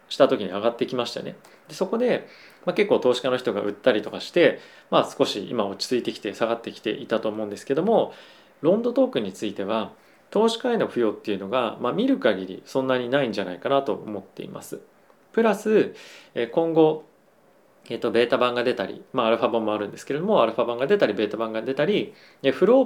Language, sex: Japanese, male